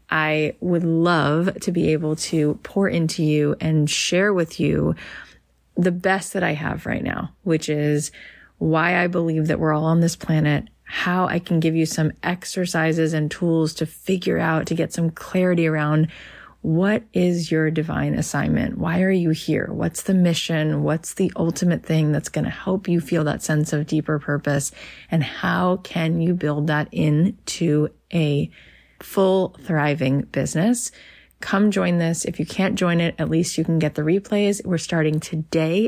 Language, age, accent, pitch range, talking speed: English, 30-49, American, 155-180 Hz, 175 wpm